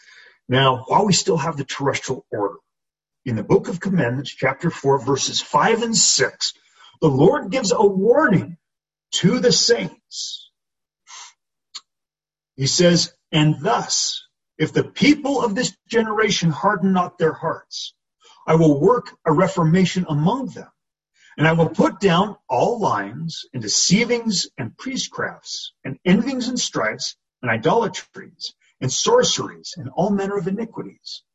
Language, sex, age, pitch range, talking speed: English, male, 40-59, 155-225 Hz, 140 wpm